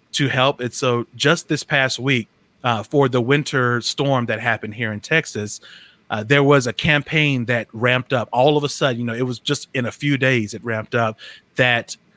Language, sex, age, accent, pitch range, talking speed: English, male, 30-49, American, 115-140 Hz, 210 wpm